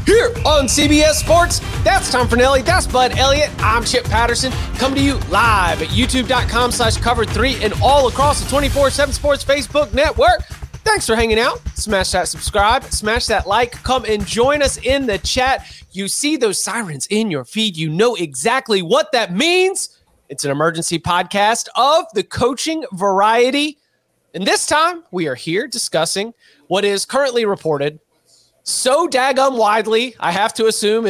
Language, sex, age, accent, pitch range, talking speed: English, male, 30-49, American, 175-260 Hz, 165 wpm